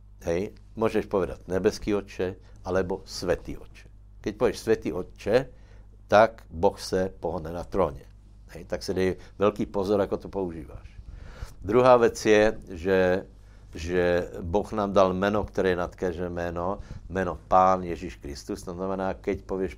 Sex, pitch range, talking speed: male, 90-100 Hz, 145 wpm